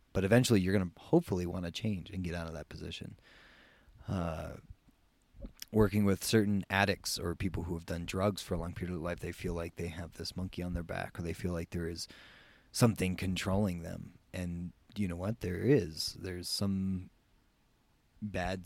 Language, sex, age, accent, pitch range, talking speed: English, male, 30-49, American, 90-105 Hz, 195 wpm